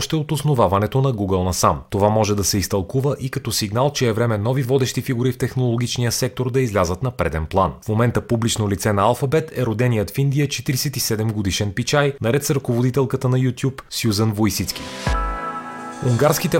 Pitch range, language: 100-135 Hz, Bulgarian